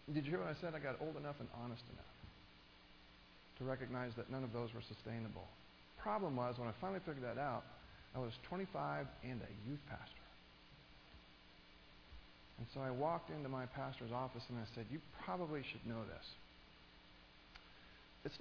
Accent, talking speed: American, 175 wpm